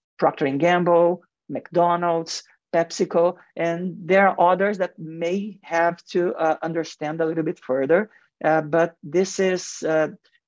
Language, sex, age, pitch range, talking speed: English, male, 50-69, 150-175 Hz, 135 wpm